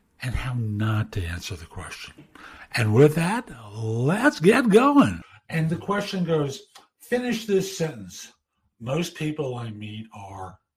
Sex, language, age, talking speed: male, English, 60-79, 140 wpm